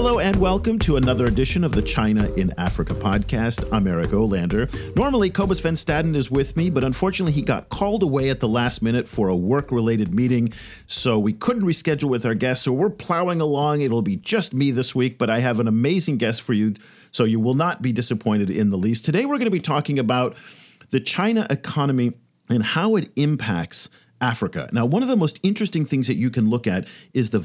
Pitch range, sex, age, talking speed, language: 105-150 Hz, male, 50-69, 215 wpm, English